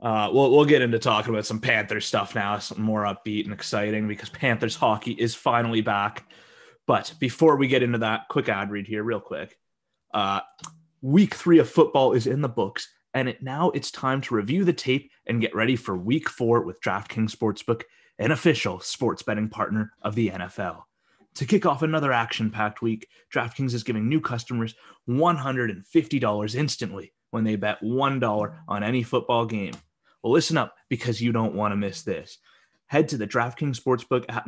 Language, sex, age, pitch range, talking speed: English, male, 20-39, 105-135 Hz, 185 wpm